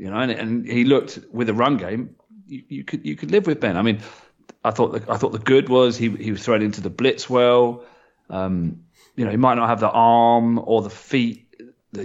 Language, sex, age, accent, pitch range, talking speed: English, male, 30-49, British, 105-125 Hz, 245 wpm